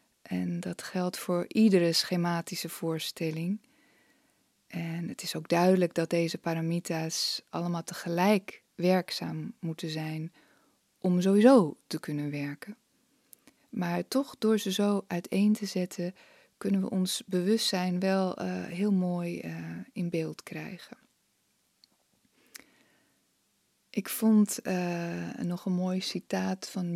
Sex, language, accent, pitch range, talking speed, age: female, English, Dutch, 170-195 Hz, 120 wpm, 20-39